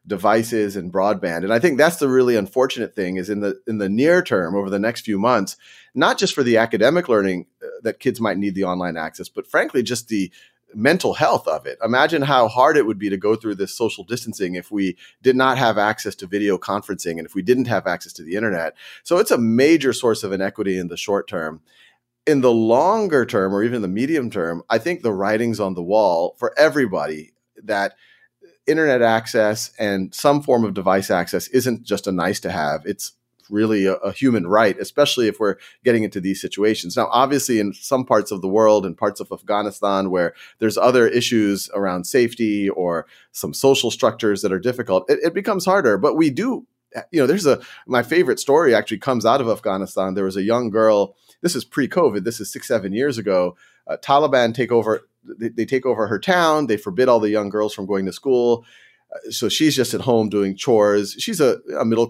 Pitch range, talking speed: 100-125 Hz, 215 wpm